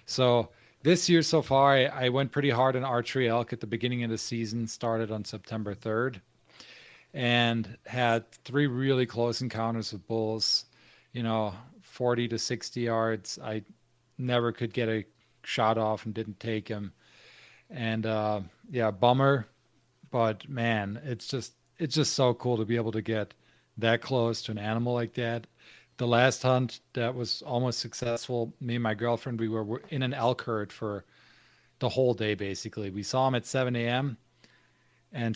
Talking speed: 170 wpm